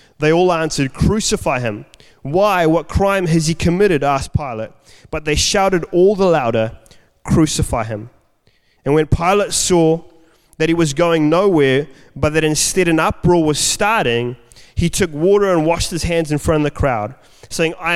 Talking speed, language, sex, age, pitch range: 170 wpm, English, male, 20-39, 130-170 Hz